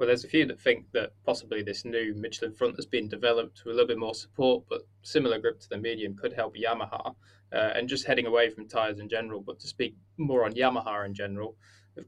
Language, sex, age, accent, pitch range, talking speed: English, male, 20-39, British, 105-145 Hz, 240 wpm